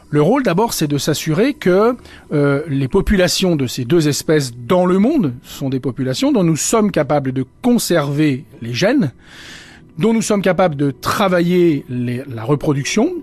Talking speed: 165 wpm